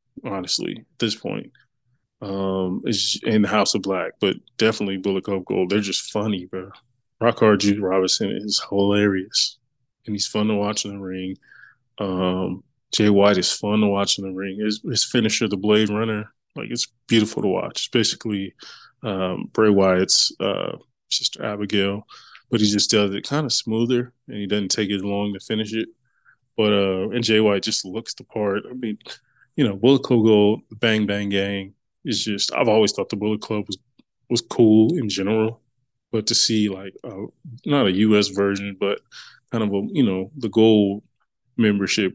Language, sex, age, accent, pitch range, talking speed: English, male, 20-39, American, 100-115 Hz, 185 wpm